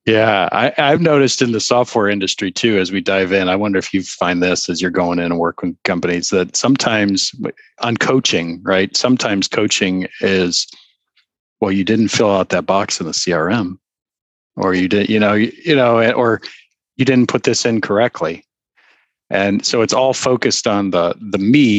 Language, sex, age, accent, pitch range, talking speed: English, male, 40-59, American, 95-115 Hz, 190 wpm